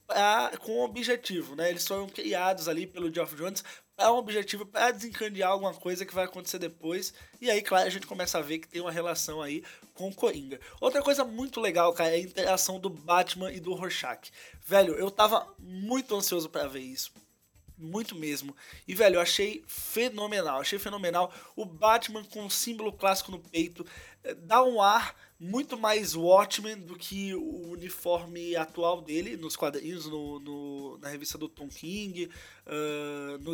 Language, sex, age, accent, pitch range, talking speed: Portuguese, male, 20-39, Brazilian, 170-200 Hz, 175 wpm